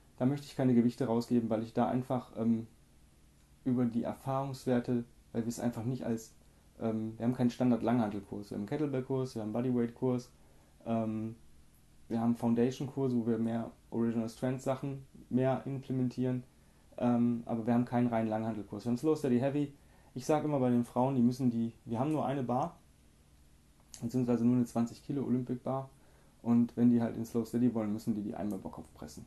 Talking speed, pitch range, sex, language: 185 wpm, 110-130 Hz, male, German